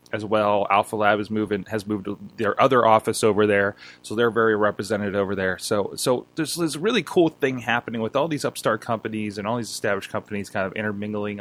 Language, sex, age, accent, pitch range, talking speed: English, male, 20-39, American, 105-125 Hz, 215 wpm